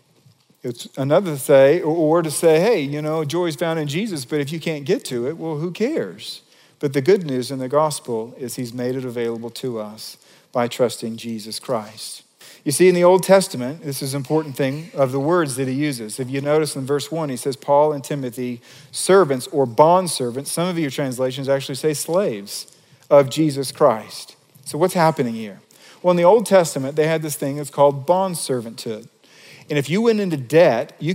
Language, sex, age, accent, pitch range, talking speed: English, male, 40-59, American, 145-205 Hz, 205 wpm